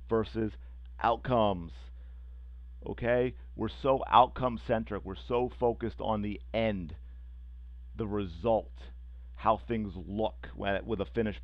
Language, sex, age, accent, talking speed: English, male, 40-59, American, 105 wpm